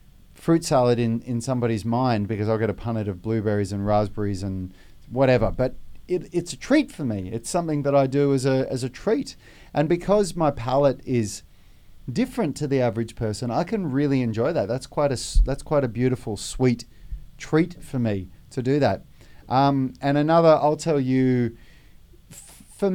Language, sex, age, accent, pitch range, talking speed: English, male, 30-49, Australian, 105-135 Hz, 185 wpm